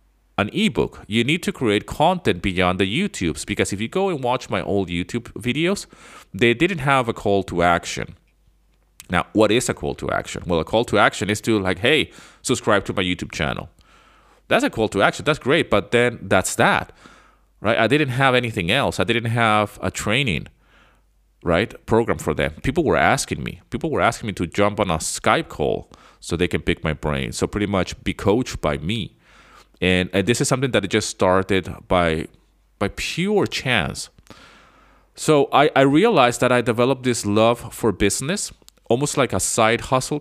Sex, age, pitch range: male, 30-49, 90-120 Hz